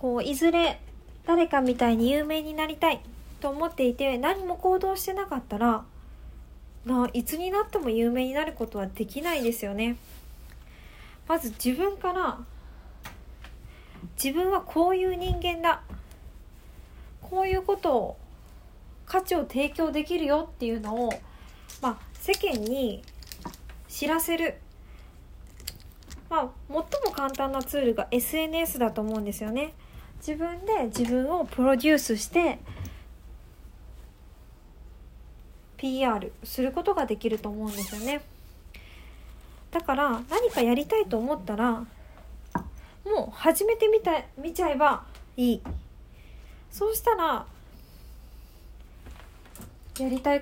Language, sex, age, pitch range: Japanese, female, 20-39, 225-325 Hz